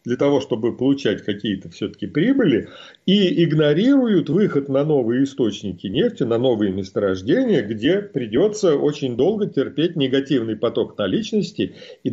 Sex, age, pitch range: male, 40-59, 125-175 Hz